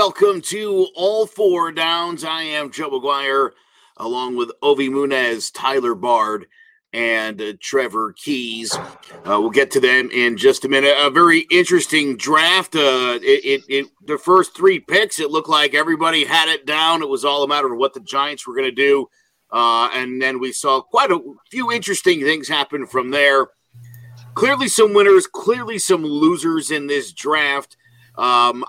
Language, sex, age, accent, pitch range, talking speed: English, male, 50-69, American, 135-210 Hz, 170 wpm